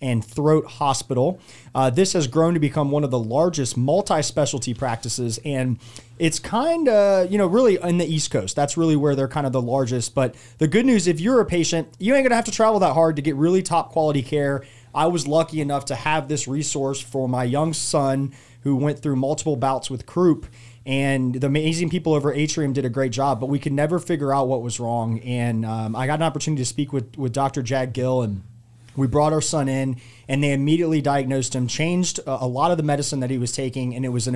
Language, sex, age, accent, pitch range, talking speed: English, male, 30-49, American, 130-165 Hz, 230 wpm